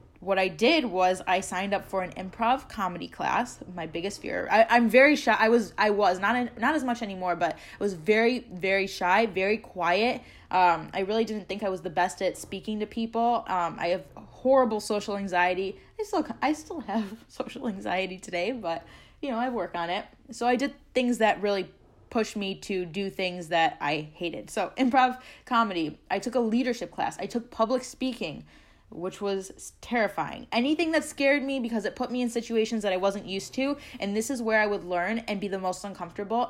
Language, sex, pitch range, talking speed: English, female, 190-245 Hz, 205 wpm